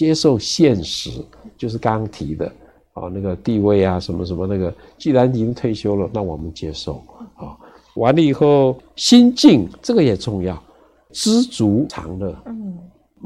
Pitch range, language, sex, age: 95-135 Hz, Chinese, male, 60-79